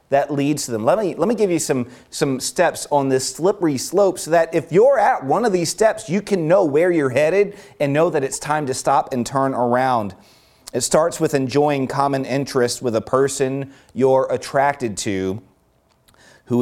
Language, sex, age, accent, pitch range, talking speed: English, male, 30-49, American, 120-155 Hz, 200 wpm